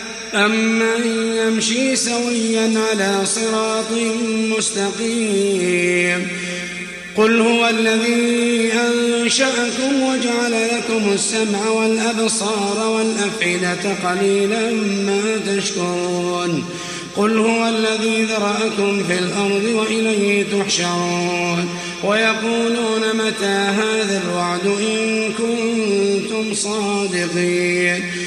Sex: male